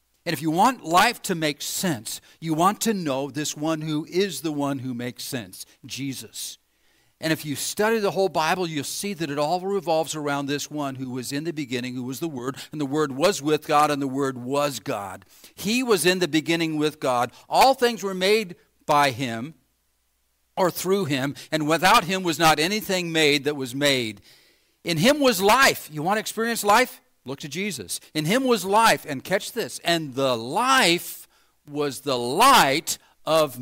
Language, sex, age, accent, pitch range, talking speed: English, male, 50-69, American, 130-195 Hz, 195 wpm